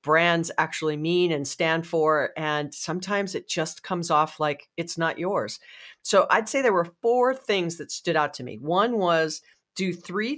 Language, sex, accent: English, female, American